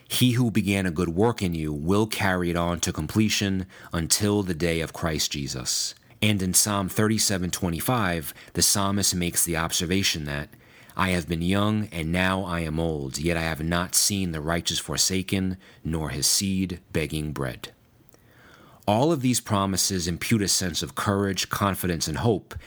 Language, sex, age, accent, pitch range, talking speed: English, male, 30-49, American, 85-105 Hz, 170 wpm